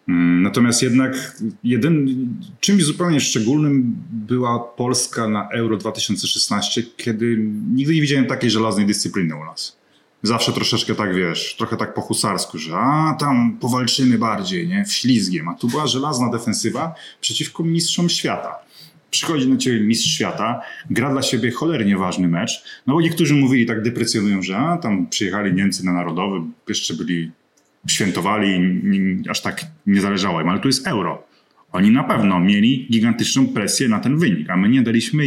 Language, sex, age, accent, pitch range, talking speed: Polish, male, 30-49, native, 100-145 Hz, 155 wpm